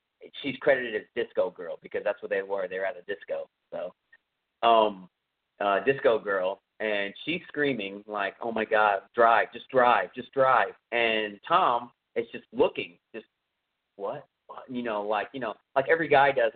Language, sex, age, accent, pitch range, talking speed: English, male, 30-49, American, 120-190 Hz, 180 wpm